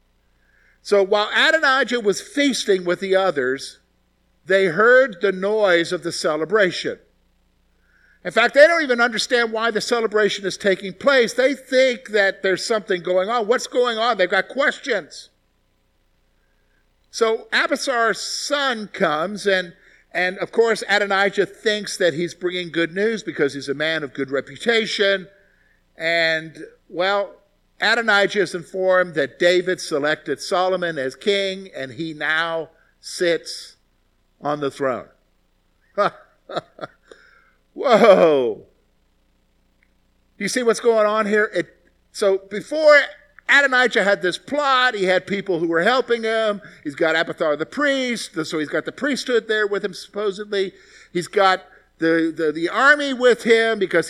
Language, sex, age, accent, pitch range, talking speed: English, male, 50-69, American, 170-230 Hz, 140 wpm